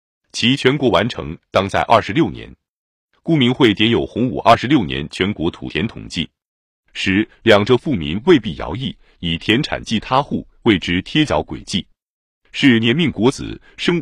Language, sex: Chinese, male